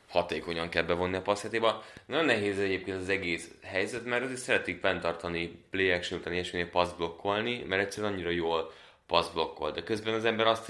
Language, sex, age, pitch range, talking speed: Hungarian, male, 20-39, 85-115 Hz, 170 wpm